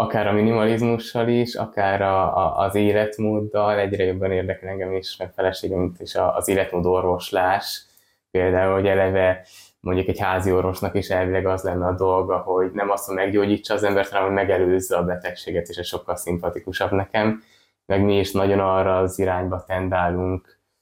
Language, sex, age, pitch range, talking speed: Hungarian, male, 20-39, 90-105 Hz, 165 wpm